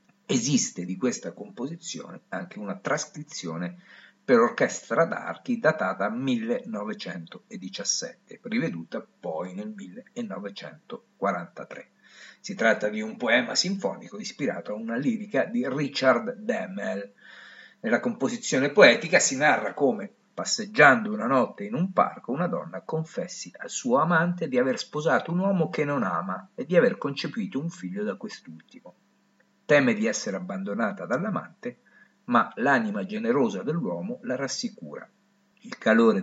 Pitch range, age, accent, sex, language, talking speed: 145-235 Hz, 50-69, native, male, Italian, 125 wpm